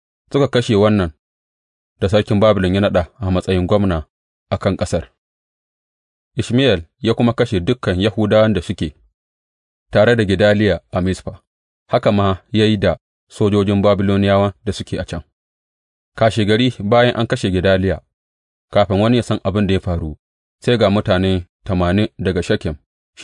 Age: 30-49